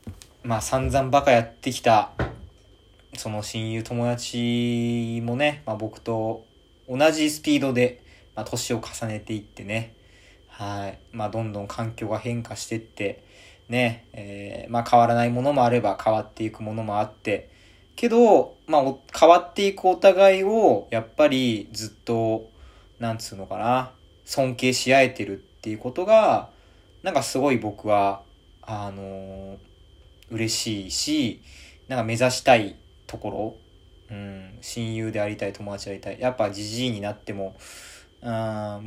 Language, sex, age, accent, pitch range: Japanese, male, 20-39, native, 100-125 Hz